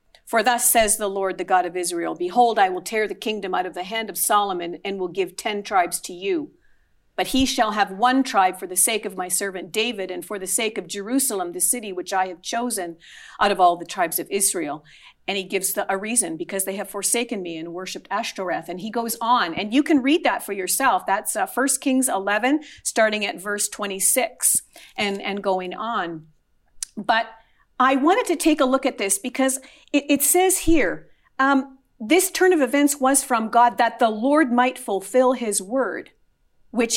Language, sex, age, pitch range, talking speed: English, female, 50-69, 195-265 Hz, 205 wpm